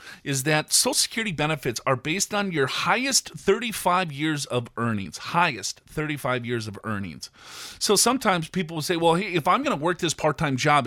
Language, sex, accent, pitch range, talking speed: English, male, American, 140-195 Hz, 190 wpm